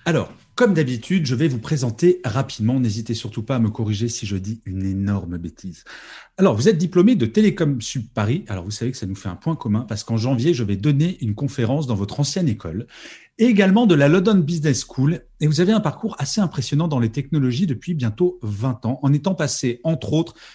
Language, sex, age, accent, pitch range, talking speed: French, male, 40-59, French, 115-175 Hz, 220 wpm